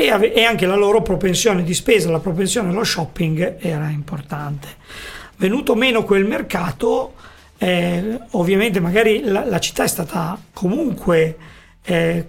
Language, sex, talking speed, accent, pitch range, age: Italian, male, 130 wpm, native, 170-205 Hz, 40-59